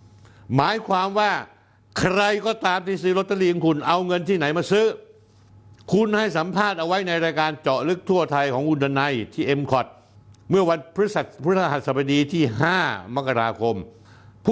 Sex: male